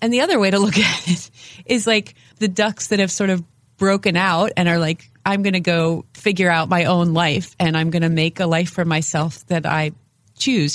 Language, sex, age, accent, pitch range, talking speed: English, female, 30-49, American, 155-195 Hz, 235 wpm